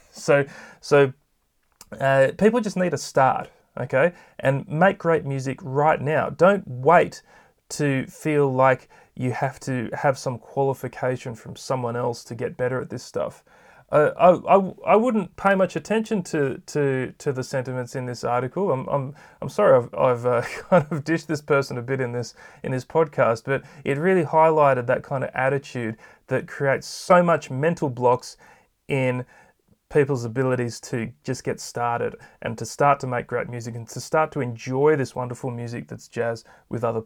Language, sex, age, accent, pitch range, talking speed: English, male, 30-49, Australian, 125-160 Hz, 180 wpm